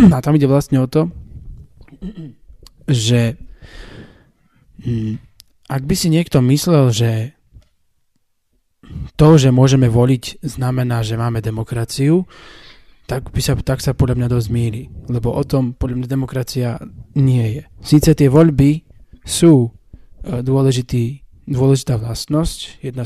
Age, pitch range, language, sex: 20-39, 120-145 Hz, Slovak, male